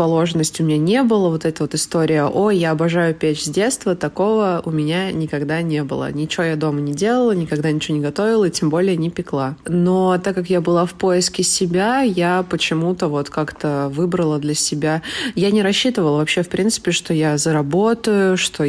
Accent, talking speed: native, 190 wpm